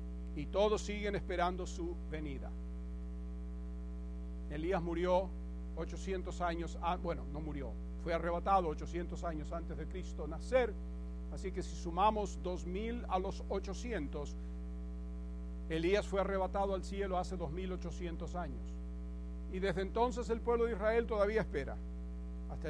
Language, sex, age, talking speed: English, male, 50-69, 125 wpm